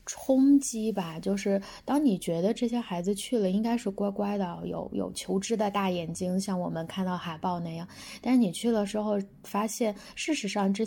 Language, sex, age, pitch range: Chinese, female, 20-39, 190-230 Hz